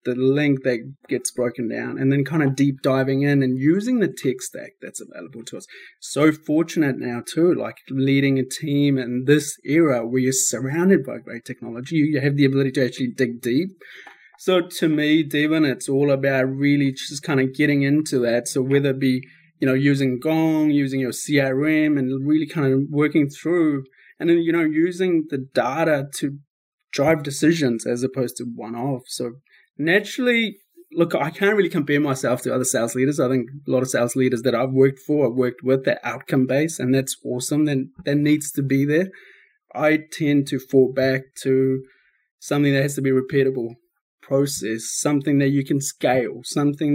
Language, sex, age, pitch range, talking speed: English, male, 20-39, 130-155 Hz, 195 wpm